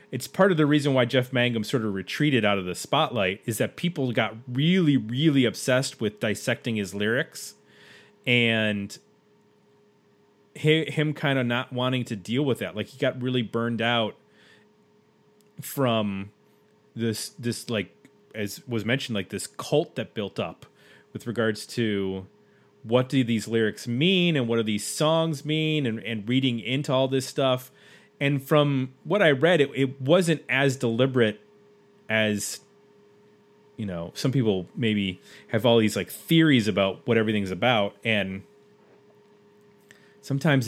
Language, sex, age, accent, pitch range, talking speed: English, male, 30-49, American, 110-145 Hz, 150 wpm